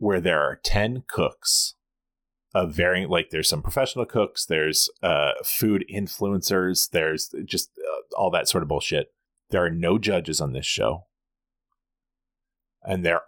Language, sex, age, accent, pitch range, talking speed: English, male, 30-49, American, 90-120 Hz, 150 wpm